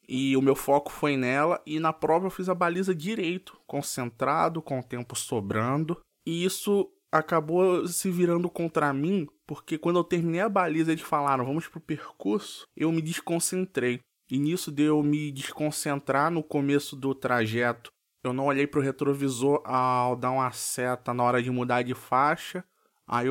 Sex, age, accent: male, 20-39, Brazilian